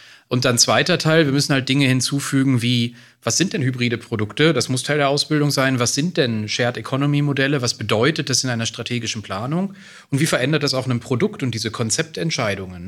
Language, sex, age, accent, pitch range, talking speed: German, male, 40-59, German, 115-145 Hz, 205 wpm